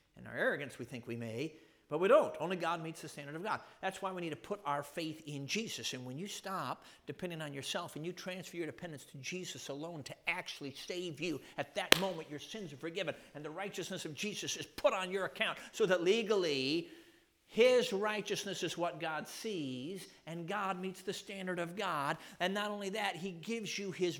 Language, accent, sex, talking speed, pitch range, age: English, American, male, 215 wpm, 155-210 Hz, 50-69